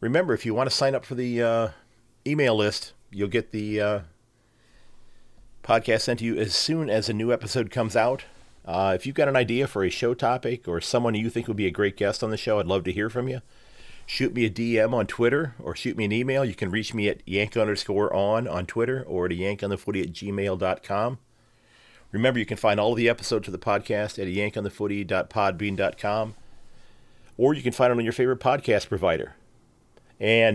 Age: 40-59